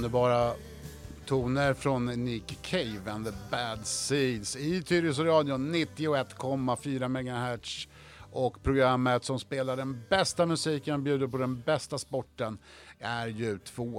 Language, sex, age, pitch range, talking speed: Swedish, male, 60-79, 105-135 Hz, 135 wpm